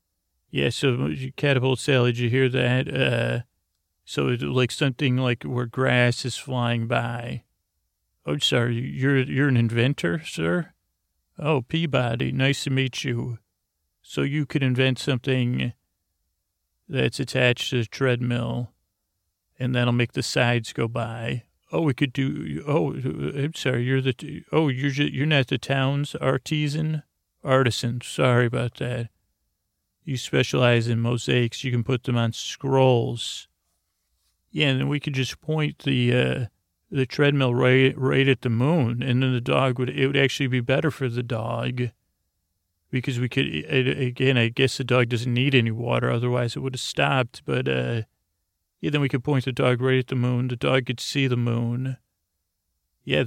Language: English